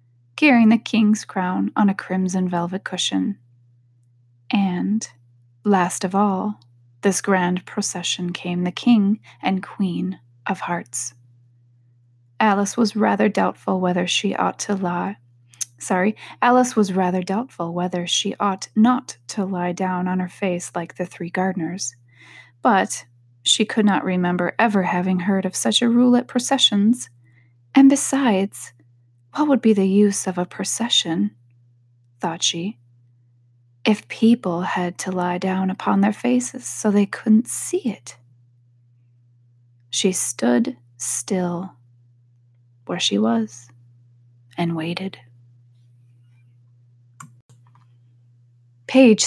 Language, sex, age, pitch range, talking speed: English, female, 20-39, 120-200 Hz, 120 wpm